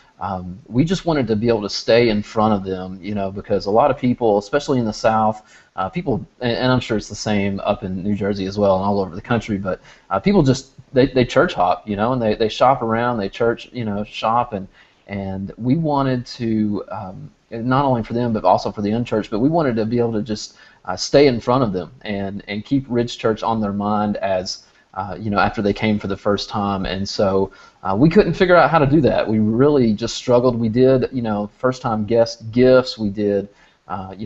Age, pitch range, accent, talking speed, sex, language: 30-49, 100-120 Hz, American, 245 wpm, male, English